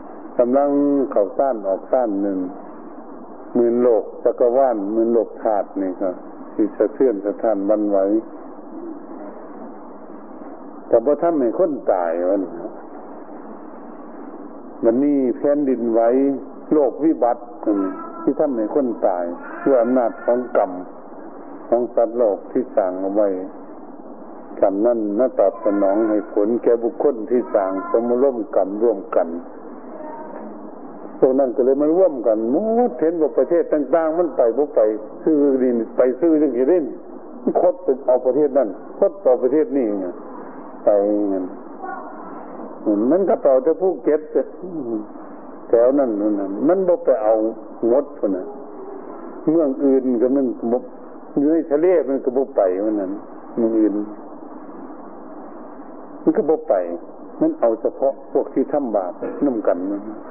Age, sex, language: 60-79, male, Thai